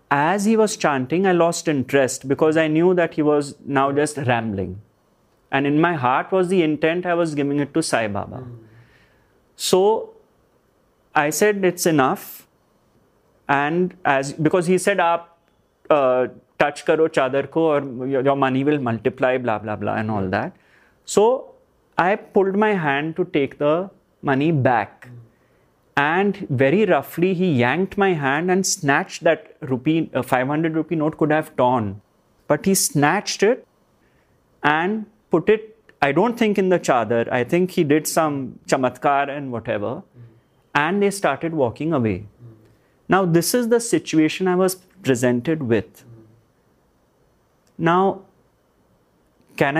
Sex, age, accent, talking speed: male, 30-49, Indian, 145 wpm